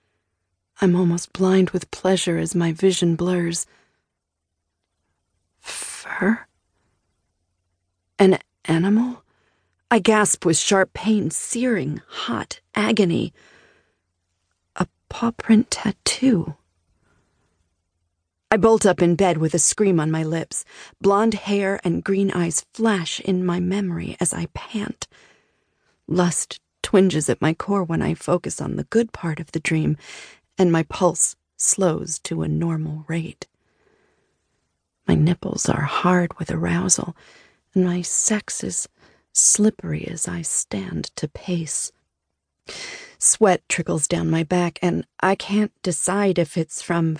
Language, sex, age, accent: English, female, 40-59, American